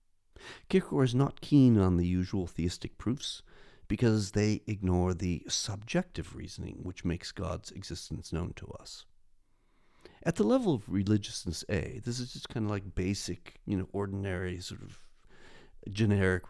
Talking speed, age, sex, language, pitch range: 150 wpm, 50-69, male, English, 90-125 Hz